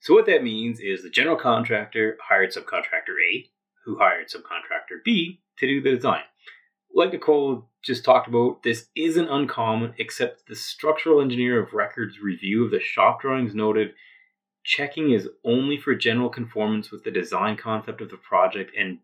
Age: 30-49